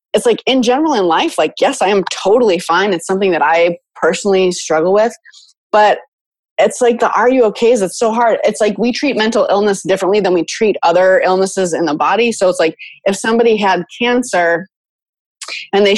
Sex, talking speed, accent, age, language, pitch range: female, 200 wpm, American, 20-39, English, 175-235 Hz